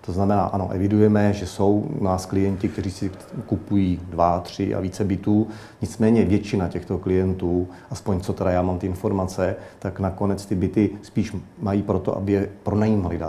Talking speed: 165 wpm